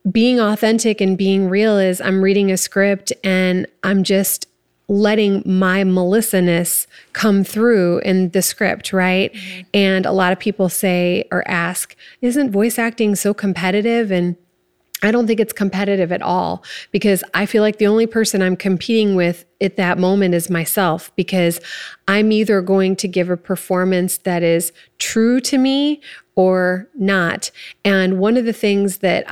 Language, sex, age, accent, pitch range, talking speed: English, female, 30-49, American, 180-210 Hz, 160 wpm